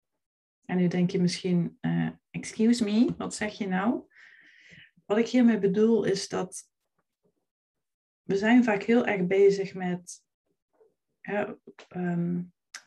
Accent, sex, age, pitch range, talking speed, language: Dutch, female, 30-49, 180-225 Hz, 120 wpm, Dutch